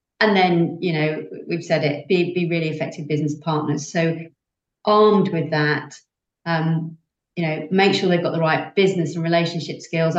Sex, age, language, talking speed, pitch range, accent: female, 40-59, English, 175 wpm, 165-205 Hz, British